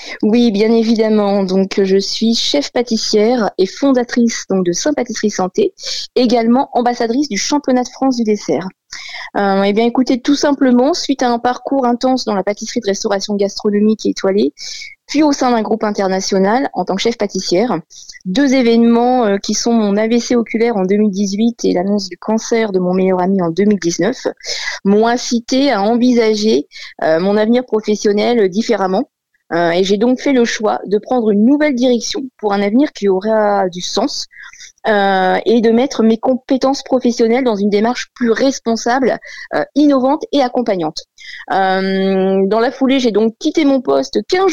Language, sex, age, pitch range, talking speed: French, female, 20-39, 205-265 Hz, 165 wpm